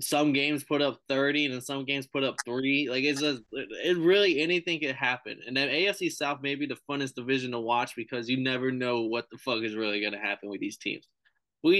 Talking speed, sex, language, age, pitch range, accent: 235 wpm, male, English, 20-39, 125-155 Hz, American